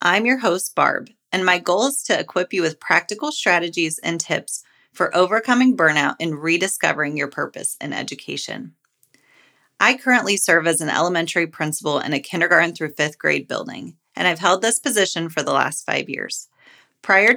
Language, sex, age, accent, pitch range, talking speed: English, female, 30-49, American, 155-205 Hz, 175 wpm